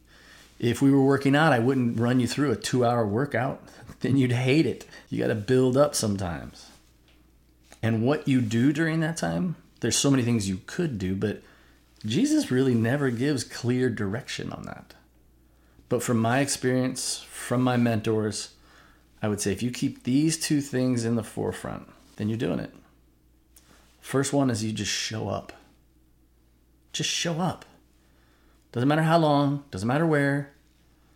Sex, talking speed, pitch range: male, 165 wpm, 85-125 Hz